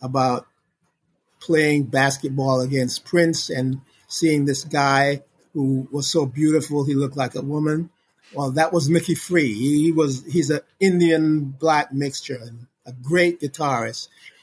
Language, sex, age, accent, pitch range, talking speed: English, male, 50-69, American, 135-170 Hz, 135 wpm